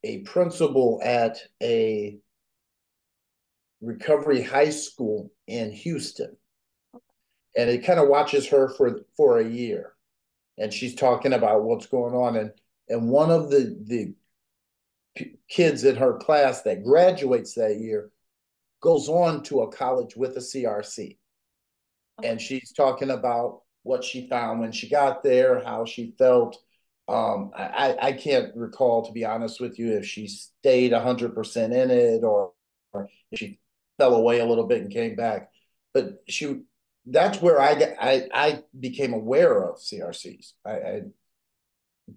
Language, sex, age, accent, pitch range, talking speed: English, male, 50-69, American, 115-150 Hz, 145 wpm